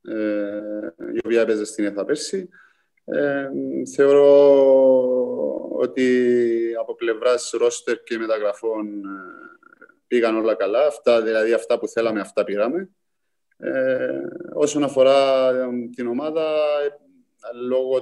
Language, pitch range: Greek, 115-175 Hz